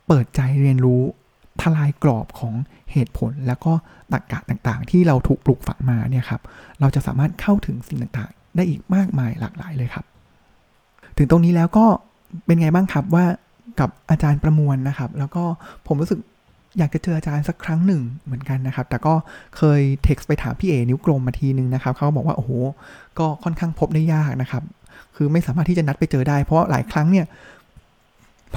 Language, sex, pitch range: Thai, male, 130-165 Hz